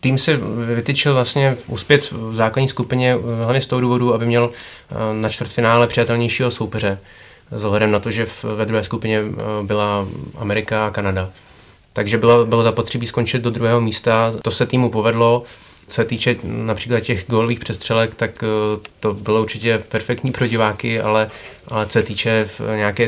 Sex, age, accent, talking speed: male, 20-39, native, 165 wpm